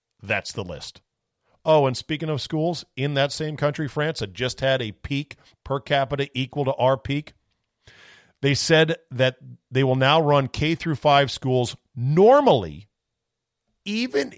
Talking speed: 150 wpm